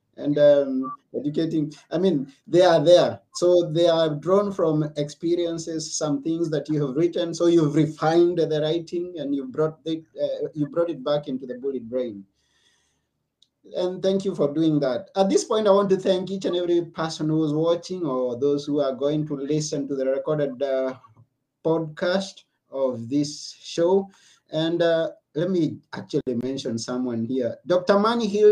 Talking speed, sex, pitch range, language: 170 wpm, male, 140-175 Hz, English